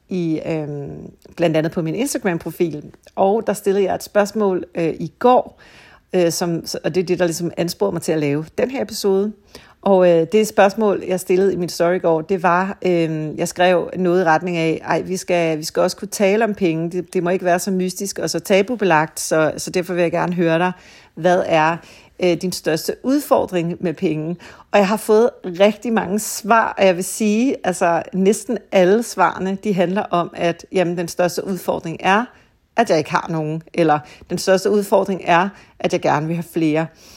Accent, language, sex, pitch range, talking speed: native, Danish, female, 170-195 Hz, 205 wpm